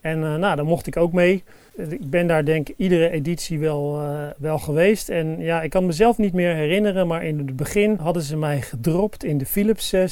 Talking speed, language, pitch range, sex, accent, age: 230 wpm, Dutch, 150-180 Hz, male, Dutch, 40-59